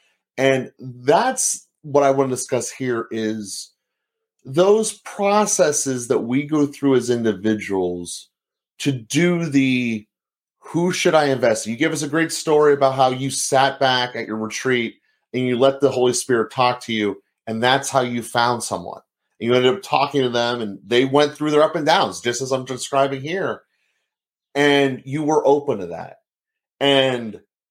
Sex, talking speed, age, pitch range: male, 175 wpm, 30-49, 115-150 Hz